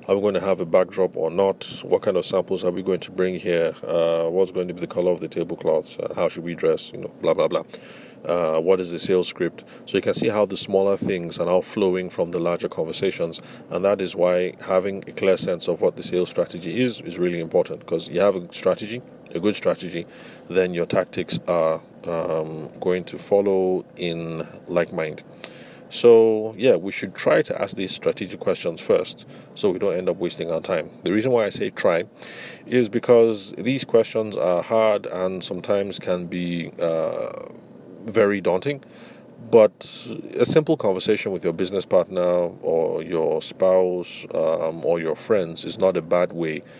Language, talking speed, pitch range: English, 195 wpm, 85-115 Hz